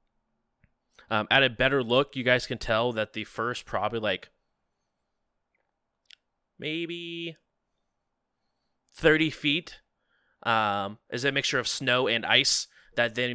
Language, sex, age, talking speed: English, male, 20-39, 120 wpm